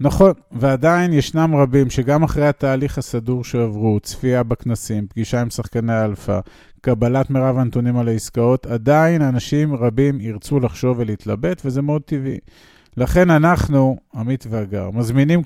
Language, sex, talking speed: Hebrew, male, 130 wpm